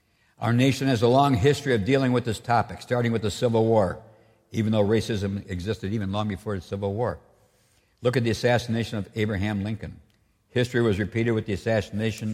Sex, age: male, 60-79